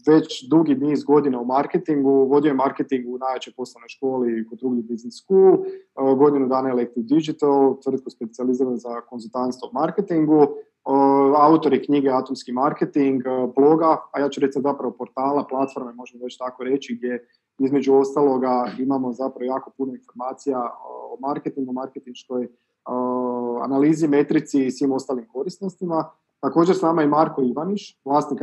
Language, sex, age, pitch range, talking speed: Croatian, male, 20-39, 125-145 Hz, 145 wpm